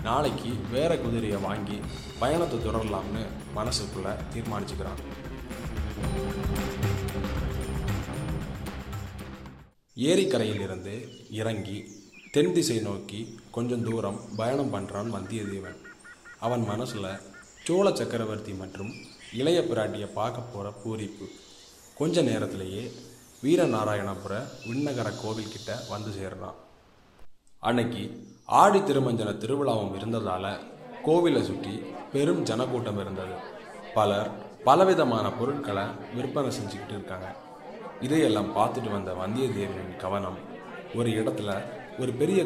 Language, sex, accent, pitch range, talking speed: Tamil, male, native, 100-120 Hz, 80 wpm